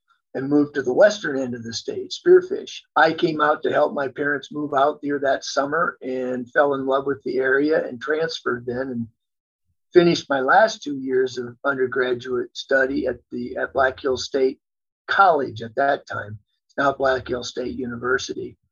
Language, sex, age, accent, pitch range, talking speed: English, male, 50-69, American, 125-160 Hz, 180 wpm